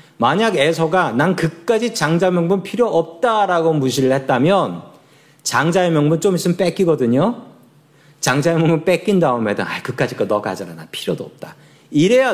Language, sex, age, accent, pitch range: Korean, male, 40-59, native, 150-205 Hz